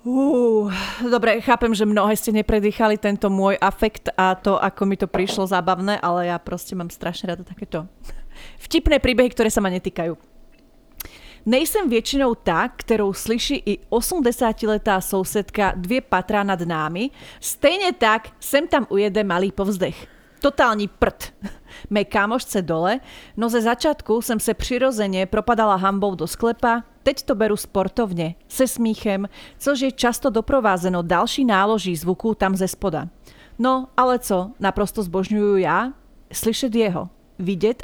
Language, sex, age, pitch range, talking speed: Slovak, female, 30-49, 190-235 Hz, 145 wpm